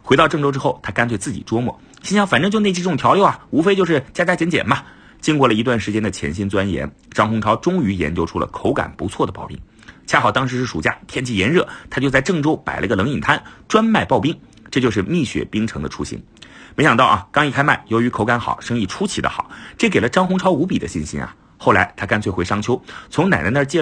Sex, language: male, Chinese